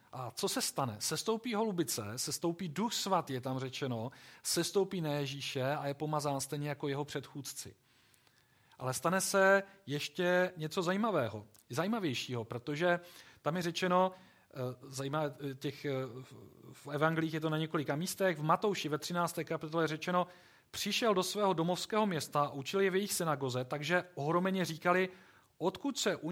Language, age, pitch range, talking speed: Czech, 40-59, 135-175 Hz, 145 wpm